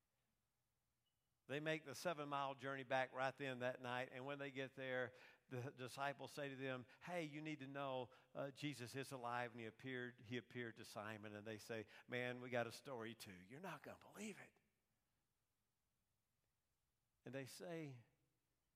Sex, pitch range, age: male, 120-150 Hz, 50-69